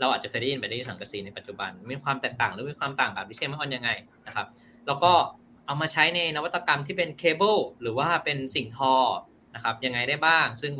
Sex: male